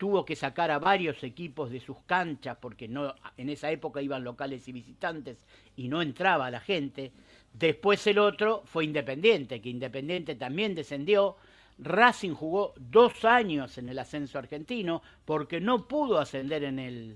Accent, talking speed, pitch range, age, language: Argentinian, 155 wpm, 135-195 Hz, 50-69, Spanish